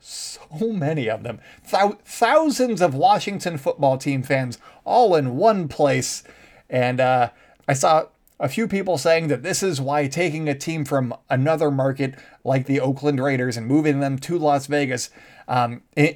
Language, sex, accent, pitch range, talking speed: English, male, American, 130-165 Hz, 165 wpm